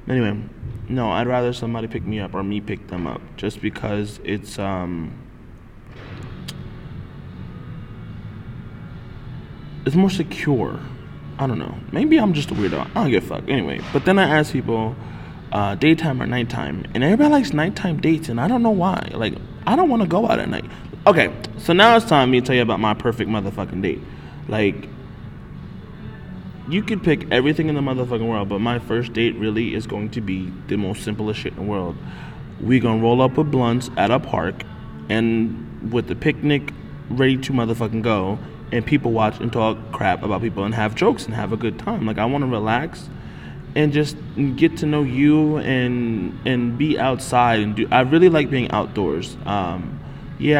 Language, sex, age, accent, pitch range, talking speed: English, male, 20-39, American, 110-145 Hz, 190 wpm